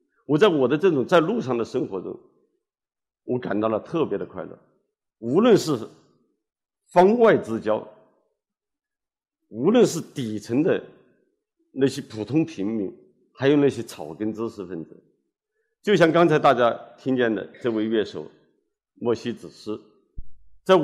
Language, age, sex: Chinese, 50-69, male